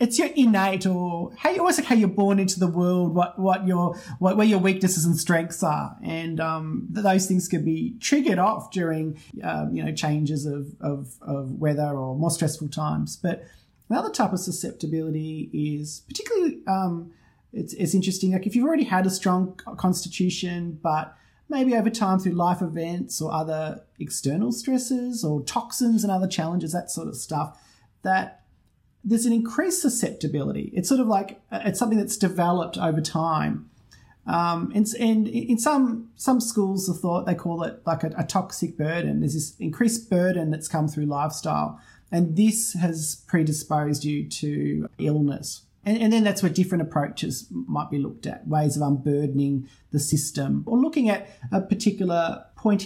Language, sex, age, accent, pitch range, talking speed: English, male, 30-49, Australian, 155-205 Hz, 175 wpm